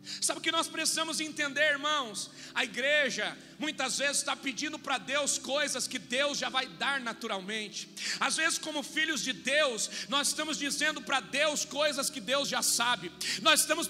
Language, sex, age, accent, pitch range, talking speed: Portuguese, male, 40-59, Brazilian, 265-295 Hz, 175 wpm